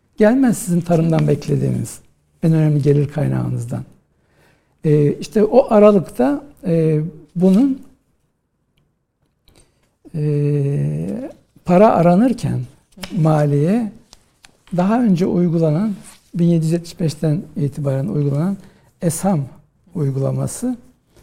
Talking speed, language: 75 wpm, Turkish